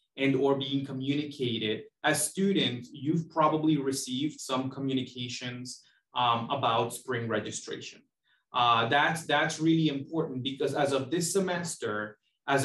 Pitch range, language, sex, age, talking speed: 125-155 Hz, English, male, 30-49, 125 wpm